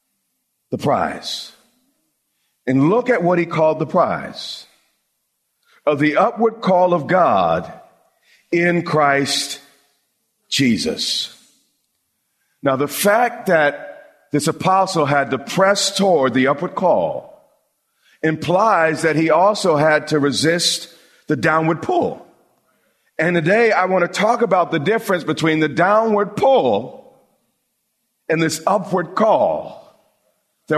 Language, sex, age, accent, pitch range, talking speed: English, male, 50-69, American, 140-190 Hz, 115 wpm